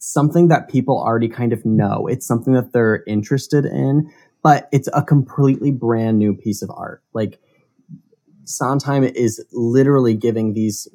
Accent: American